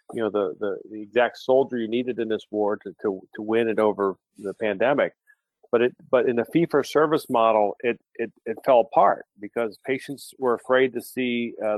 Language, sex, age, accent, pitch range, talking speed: English, male, 40-59, American, 110-130 Hz, 210 wpm